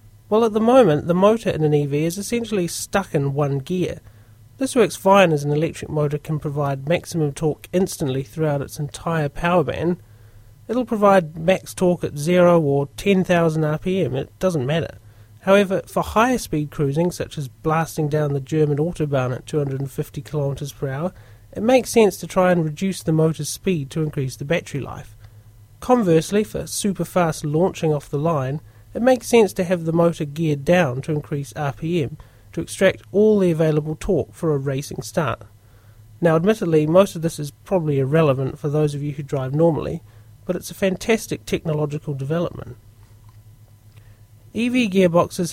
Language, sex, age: English, male, 30-49